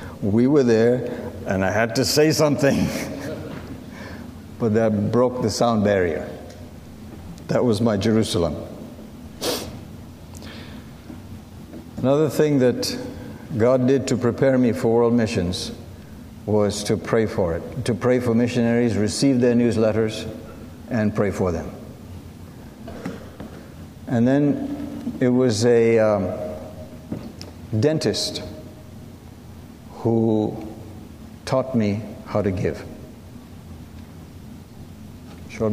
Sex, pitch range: male, 100-120 Hz